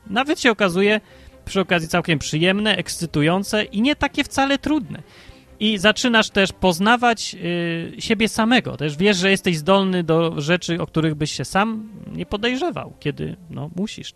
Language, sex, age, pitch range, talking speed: Polish, male, 30-49, 155-205 Hz, 150 wpm